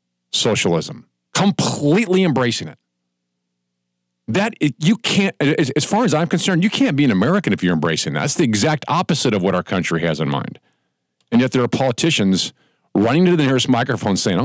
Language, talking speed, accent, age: English, 185 wpm, American, 50-69